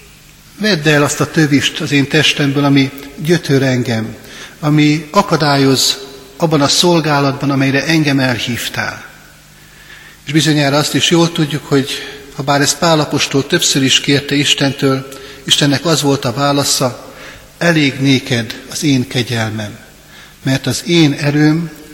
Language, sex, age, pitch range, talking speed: Hungarian, male, 60-79, 130-150 Hz, 130 wpm